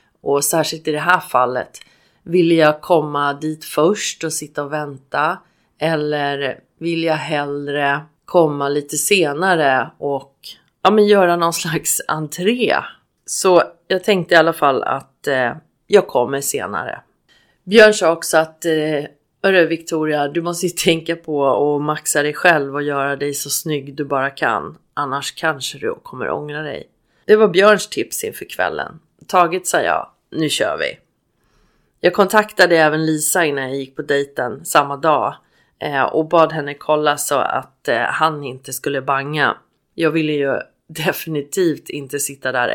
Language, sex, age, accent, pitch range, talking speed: Swedish, female, 30-49, native, 145-175 Hz, 155 wpm